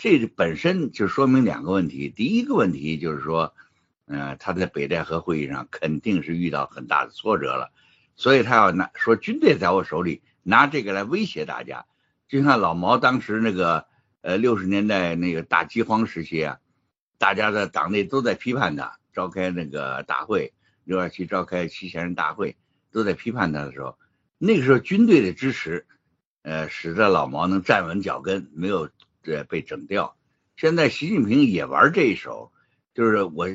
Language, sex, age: Chinese, male, 60-79